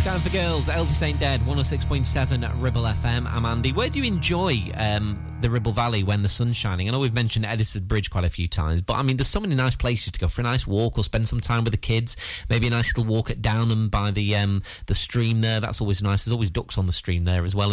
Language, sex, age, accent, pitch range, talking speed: English, male, 30-49, British, 90-115 Hz, 265 wpm